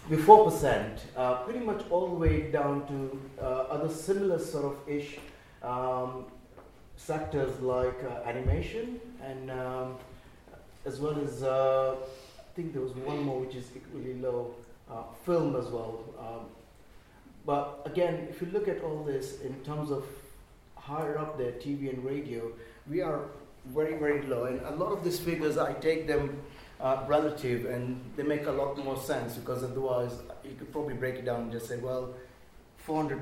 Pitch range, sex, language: 120-150 Hz, male, English